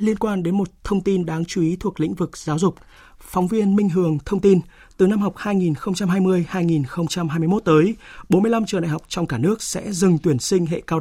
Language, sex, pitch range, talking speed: Vietnamese, male, 145-185 Hz, 205 wpm